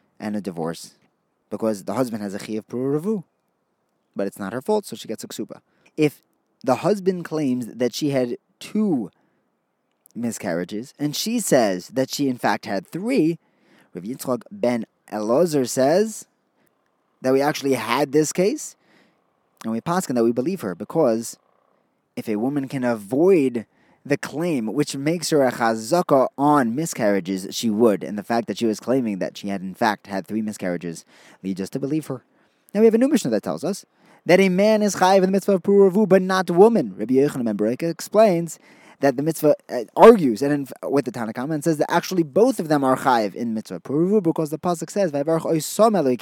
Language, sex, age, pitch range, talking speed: English, male, 20-39, 115-185 Hz, 190 wpm